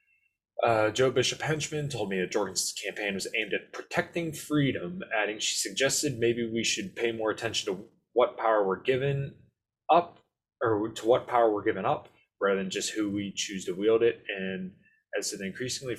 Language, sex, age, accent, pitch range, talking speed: English, male, 20-39, American, 100-150 Hz, 185 wpm